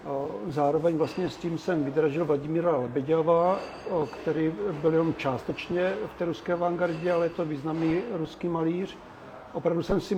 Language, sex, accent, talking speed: Czech, male, native, 145 wpm